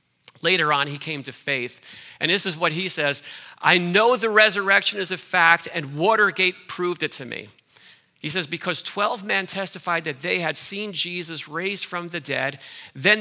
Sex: male